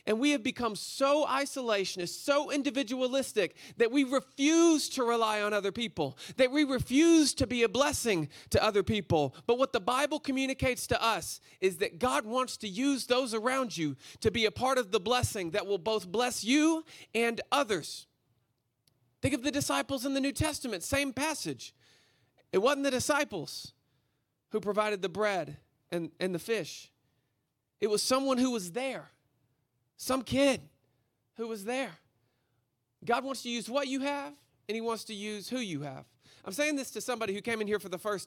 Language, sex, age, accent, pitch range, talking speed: English, male, 40-59, American, 180-260 Hz, 180 wpm